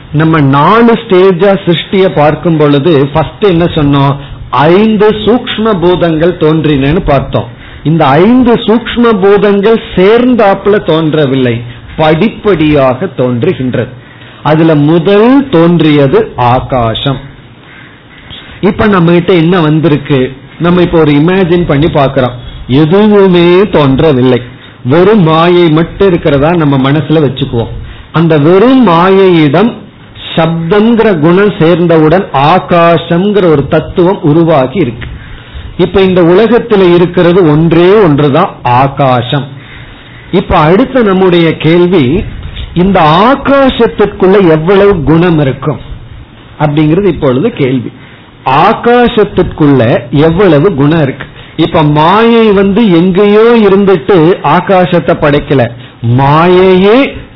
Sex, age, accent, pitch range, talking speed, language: male, 40-59, native, 140-195 Hz, 85 wpm, Tamil